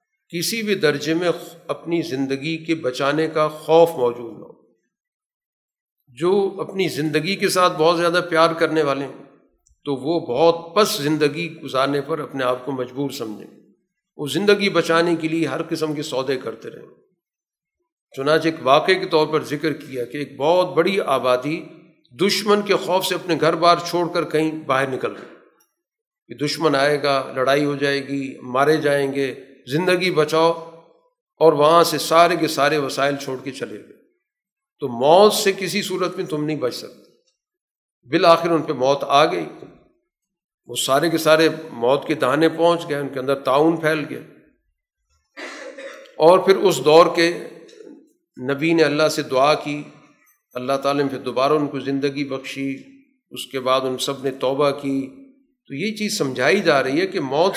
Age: 50-69